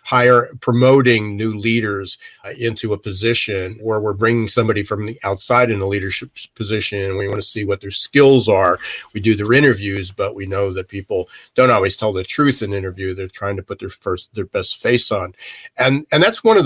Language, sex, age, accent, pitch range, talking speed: English, male, 50-69, American, 100-120 Hz, 215 wpm